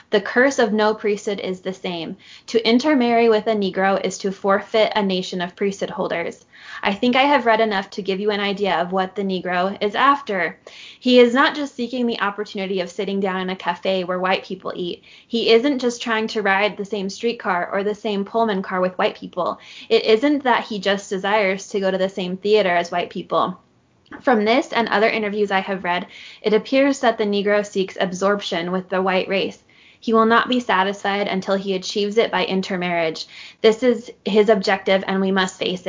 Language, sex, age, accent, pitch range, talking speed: English, female, 20-39, American, 190-220 Hz, 210 wpm